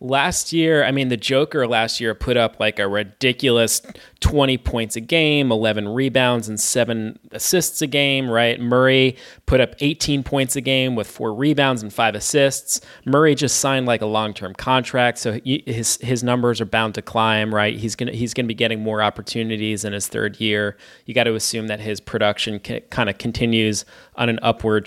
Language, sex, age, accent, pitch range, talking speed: English, male, 20-39, American, 110-130 Hz, 195 wpm